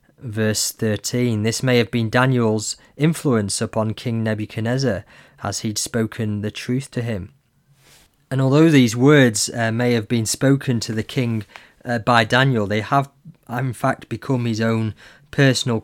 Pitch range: 110-125 Hz